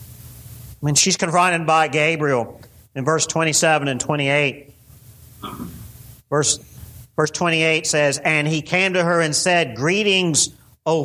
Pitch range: 120-175 Hz